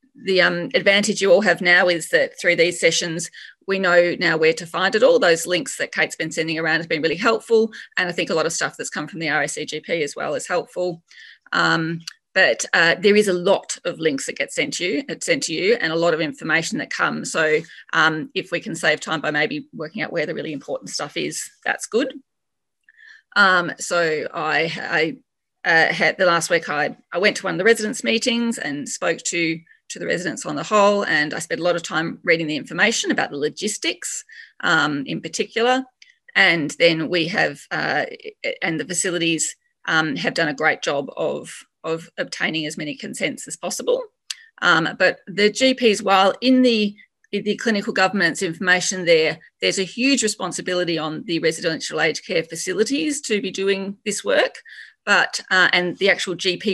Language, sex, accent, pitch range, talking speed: English, female, Australian, 165-230 Hz, 200 wpm